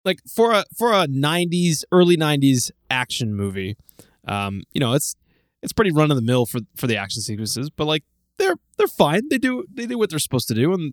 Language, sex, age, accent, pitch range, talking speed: English, male, 20-39, American, 115-155 Hz, 220 wpm